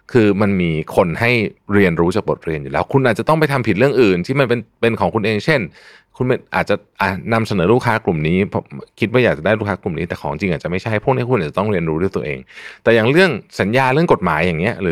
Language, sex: Thai, male